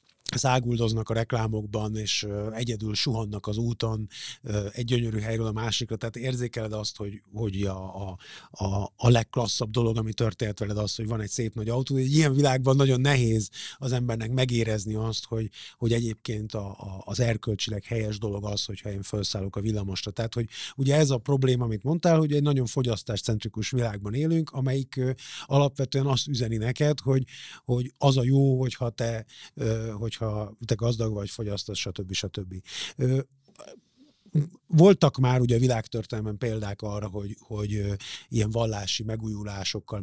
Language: Hungarian